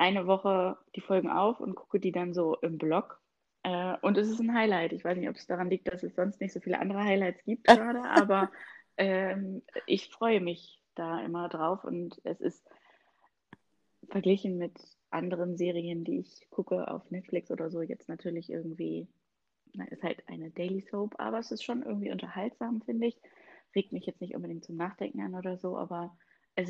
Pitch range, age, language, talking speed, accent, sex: 175-205 Hz, 20-39, German, 190 wpm, German, female